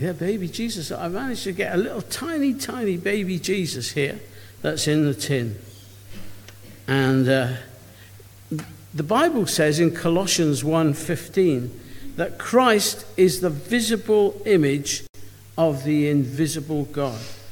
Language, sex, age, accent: English, male, 60-79, British